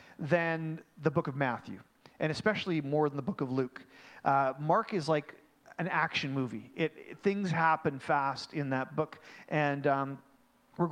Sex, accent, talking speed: male, American, 170 wpm